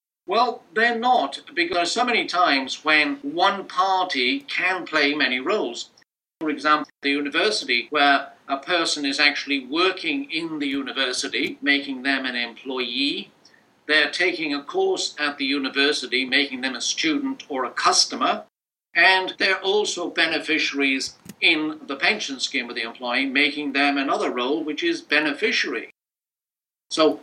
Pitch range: 135-180 Hz